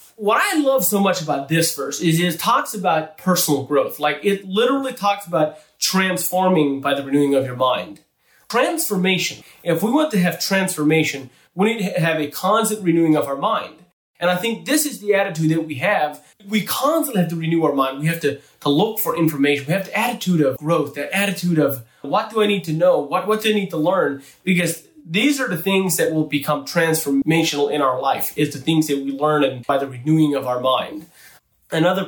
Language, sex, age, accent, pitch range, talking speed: English, male, 30-49, American, 140-180 Hz, 215 wpm